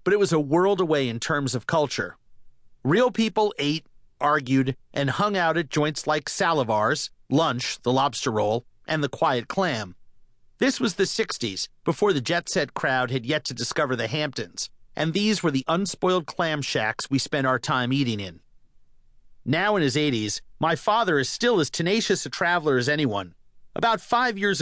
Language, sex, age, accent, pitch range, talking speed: English, male, 40-59, American, 130-185 Hz, 180 wpm